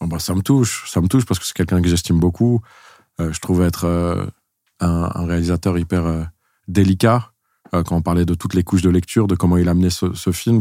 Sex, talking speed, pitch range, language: male, 240 wpm, 85-100 Hz, French